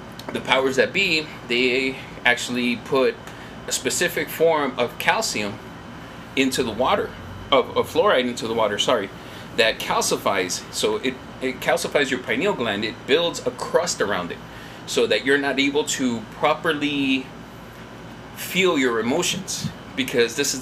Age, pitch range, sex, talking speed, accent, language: 30-49, 120-145 Hz, male, 145 wpm, American, English